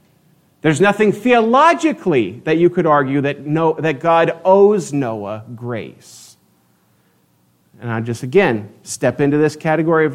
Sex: male